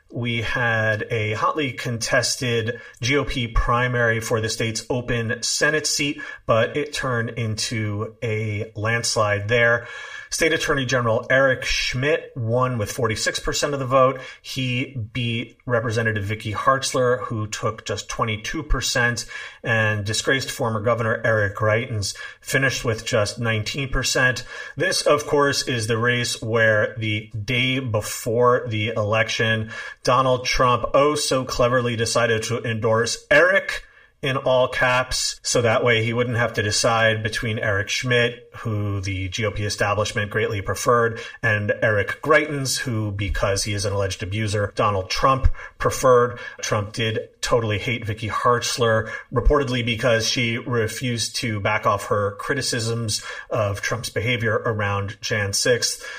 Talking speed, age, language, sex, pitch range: 135 wpm, 30-49, English, male, 110-125 Hz